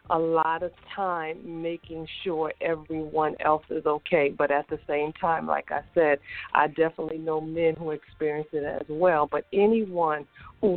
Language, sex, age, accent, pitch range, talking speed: English, female, 50-69, American, 155-175 Hz, 165 wpm